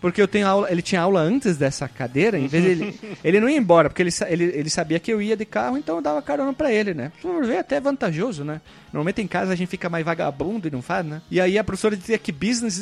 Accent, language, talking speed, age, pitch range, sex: Brazilian, Portuguese, 265 wpm, 30-49, 150-205 Hz, male